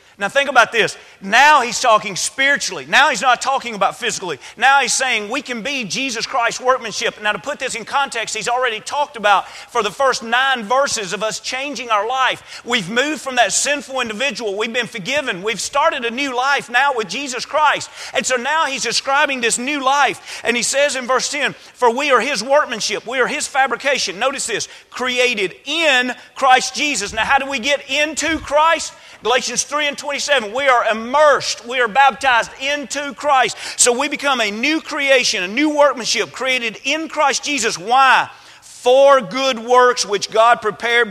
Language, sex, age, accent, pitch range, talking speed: English, male, 40-59, American, 225-280 Hz, 190 wpm